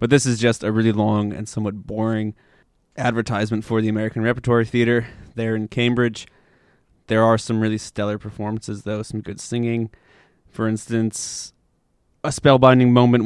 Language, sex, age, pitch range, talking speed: English, male, 20-39, 110-120 Hz, 155 wpm